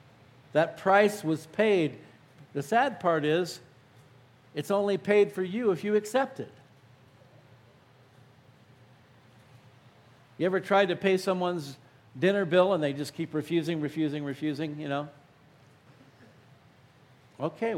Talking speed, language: 120 wpm, English